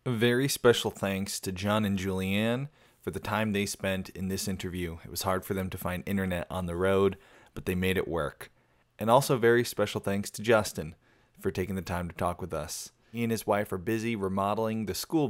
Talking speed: 220 wpm